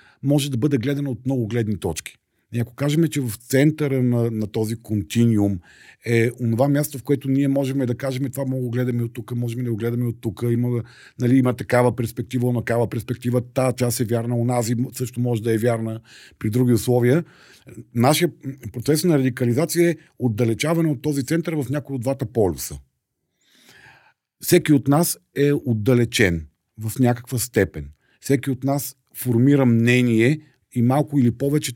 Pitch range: 115-135 Hz